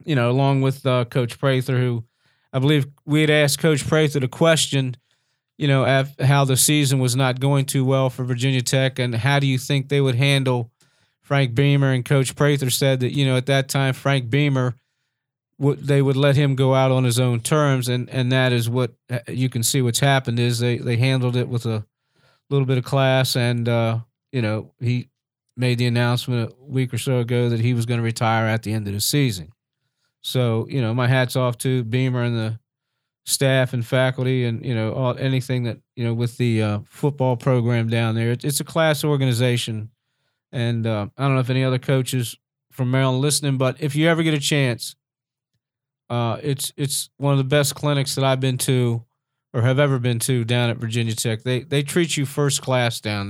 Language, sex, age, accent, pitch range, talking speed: English, male, 40-59, American, 120-140 Hz, 215 wpm